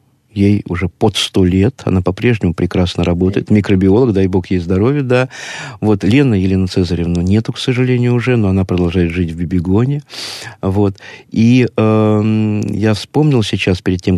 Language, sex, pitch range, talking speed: Russian, male, 95-125 Hz, 155 wpm